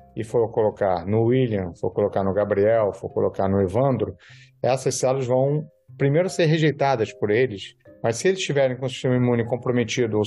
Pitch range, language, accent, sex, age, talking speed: 115-140 Hz, Portuguese, Brazilian, male, 40-59, 180 wpm